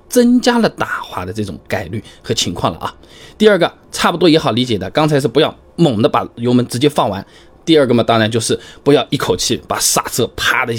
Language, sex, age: Chinese, male, 20-39